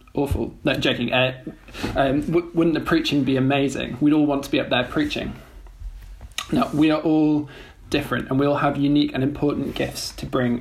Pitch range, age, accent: 120-140 Hz, 20-39, British